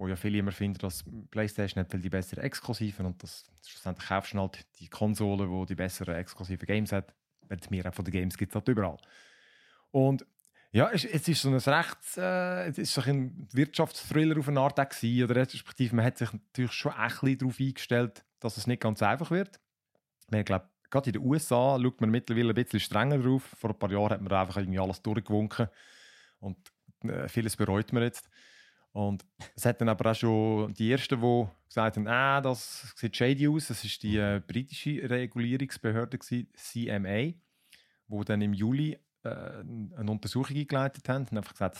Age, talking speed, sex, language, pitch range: 30-49, 190 wpm, male, German, 100-130 Hz